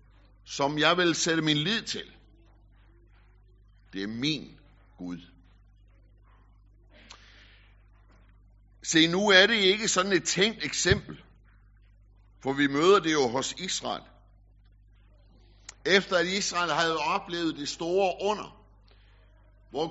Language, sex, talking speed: Danish, male, 110 wpm